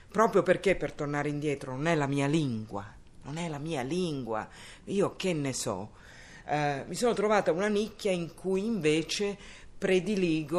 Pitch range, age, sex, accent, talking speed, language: 140-190 Hz, 50-69, female, native, 165 wpm, Italian